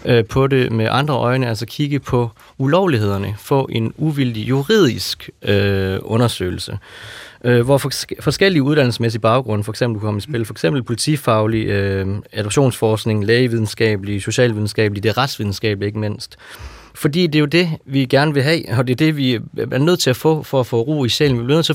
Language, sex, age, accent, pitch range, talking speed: Danish, male, 30-49, native, 110-145 Hz, 175 wpm